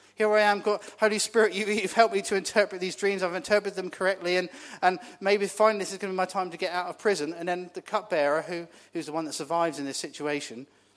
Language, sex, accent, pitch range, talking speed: English, male, British, 145-185 Hz, 255 wpm